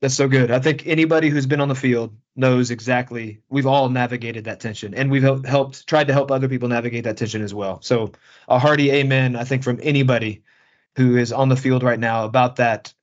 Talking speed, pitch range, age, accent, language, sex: 220 wpm, 120-135 Hz, 30-49, American, English, male